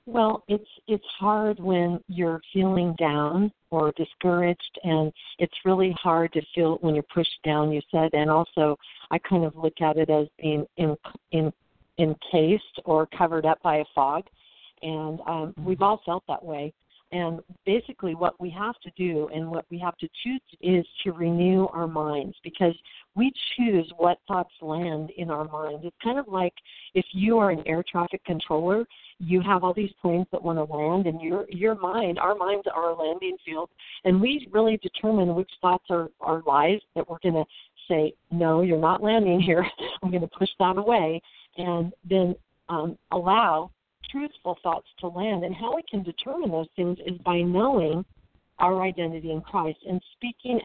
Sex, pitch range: female, 160-195 Hz